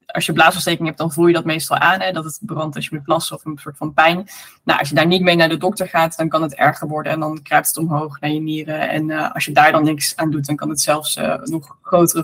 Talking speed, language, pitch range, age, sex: 305 wpm, Dutch, 165-190 Hz, 20-39, female